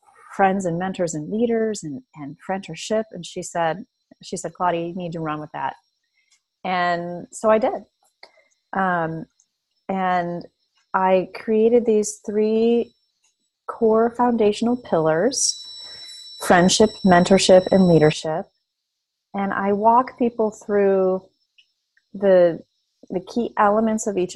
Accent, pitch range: American, 180-225 Hz